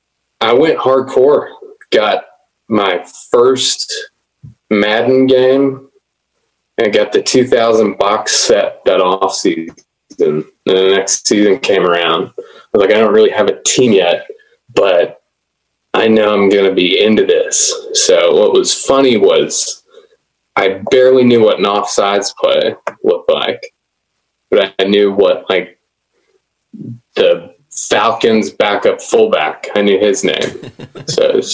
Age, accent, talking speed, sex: 20-39, American, 135 wpm, male